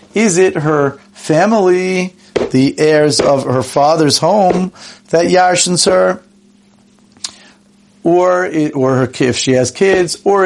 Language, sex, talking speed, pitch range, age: English, male, 125 wpm, 130-185 Hz, 40-59